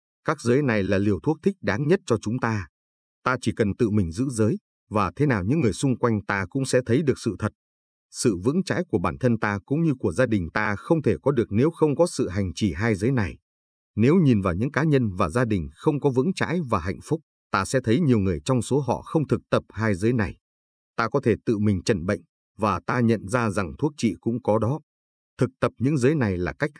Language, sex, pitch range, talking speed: Vietnamese, male, 100-130 Hz, 255 wpm